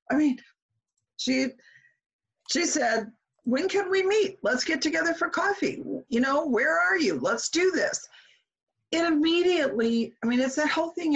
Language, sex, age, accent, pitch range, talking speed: English, female, 50-69, American, 205-285 Hz, 160 wpm